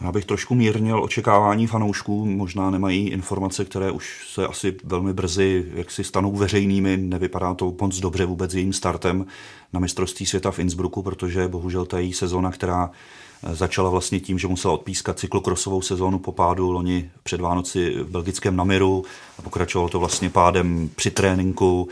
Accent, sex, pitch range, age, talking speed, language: native, male, 85-95 Hz, 30-49, 165 wpm, Czech